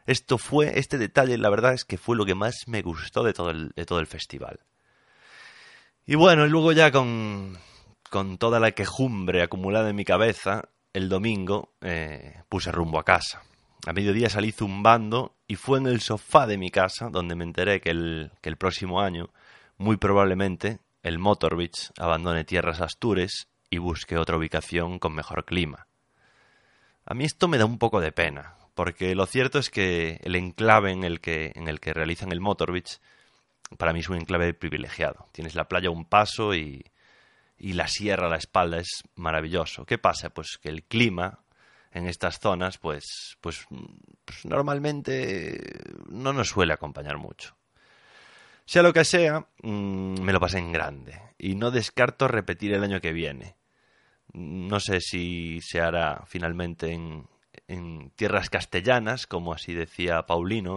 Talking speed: 170 wpm